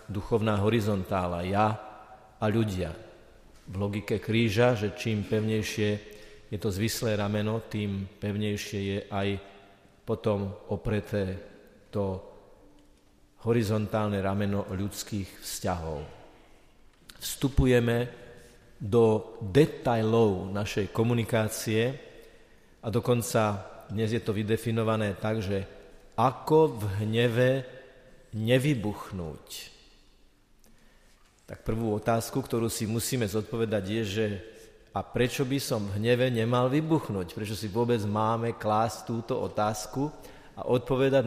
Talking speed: 100 wpm